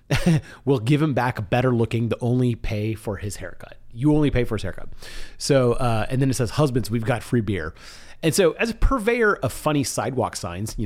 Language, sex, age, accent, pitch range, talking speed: English, male, 30-49, American, 110-145 Hz, 220 wpm